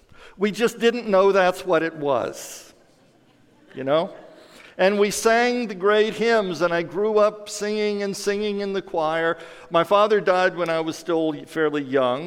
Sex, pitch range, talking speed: male, 170-210 Hz, 170 wpm